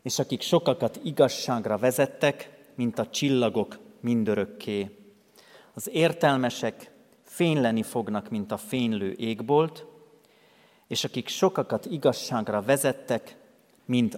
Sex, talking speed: male, 95 wpm